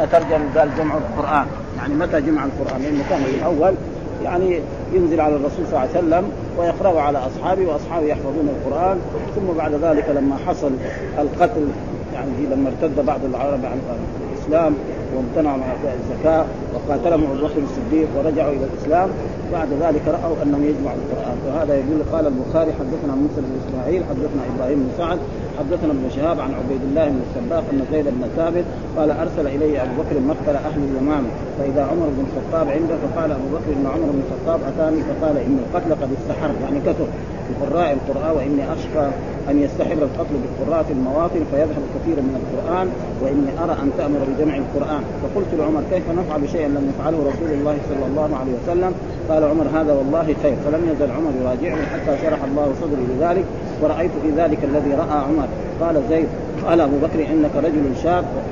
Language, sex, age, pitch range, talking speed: Arabic, male, 30-49, 145-165 Hz, 175 wpm